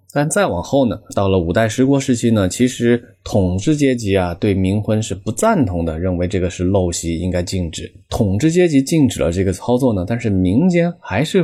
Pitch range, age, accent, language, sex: 85-115 Hz, 20-39, native, Chinese, male